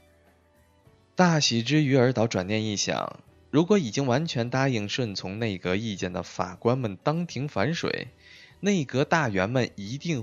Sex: male